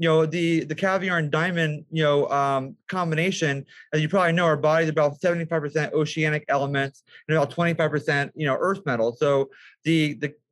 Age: 30-49